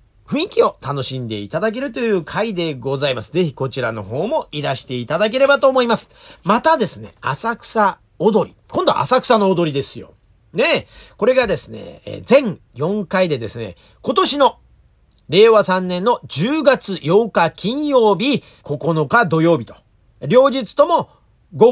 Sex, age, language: male, 40-59, Japanese